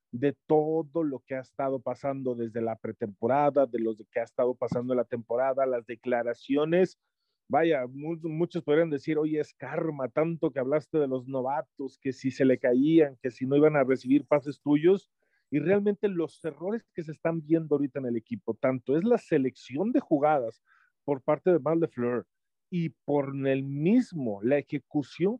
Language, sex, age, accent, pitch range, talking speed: Spanish, male, 40-59, Mexican, 130-165 Hz, 180 wpm